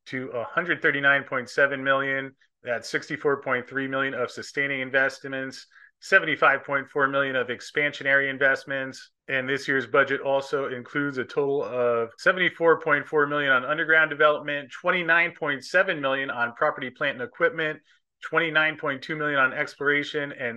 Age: 30-49